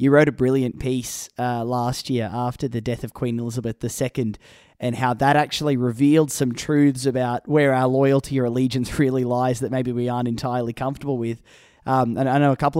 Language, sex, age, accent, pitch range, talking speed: English, male, 20-39, Australian, 125-145 Hz, 200 wpm